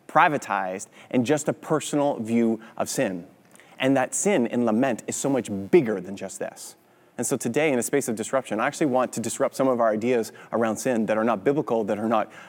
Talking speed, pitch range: 220 wpm, 110-145 Hz